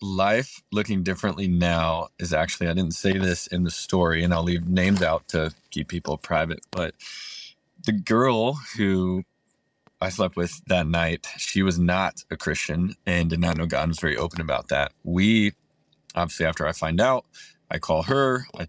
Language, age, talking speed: English, 20-39, 175 wpm